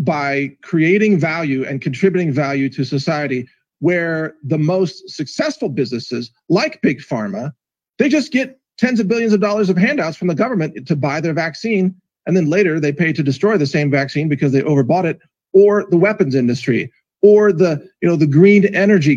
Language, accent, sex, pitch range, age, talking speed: English, American, male, 160-215 Hz, 40-59, 180 wpm